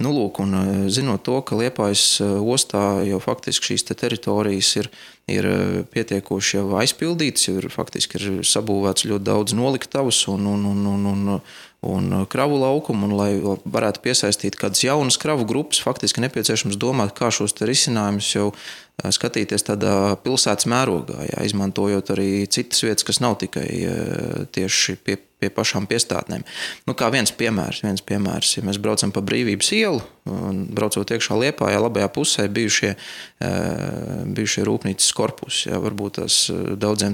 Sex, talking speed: male, 155 wpm